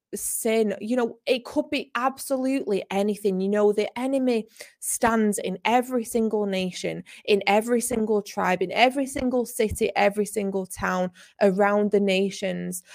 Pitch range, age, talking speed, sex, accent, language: 185-215 Hz, 20-39, 145 wpm, female, British, English